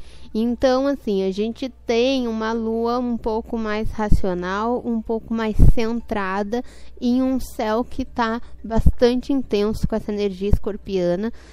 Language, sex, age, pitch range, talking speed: Portuguese, female, 10-29, 205-235 Hz, 135 wpm